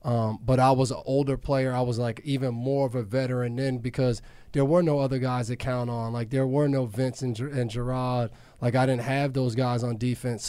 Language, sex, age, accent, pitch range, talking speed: English, male, 20-39, American, 120-135 Hz, 235 wpm